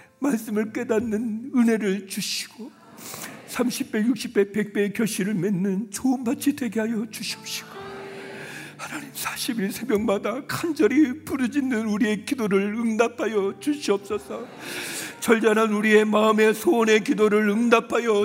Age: 40-59